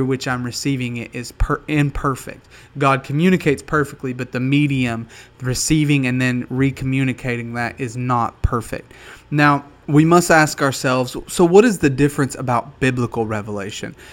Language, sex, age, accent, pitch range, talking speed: English, male, 20-39, American, 125-150 Hz, 145 wpm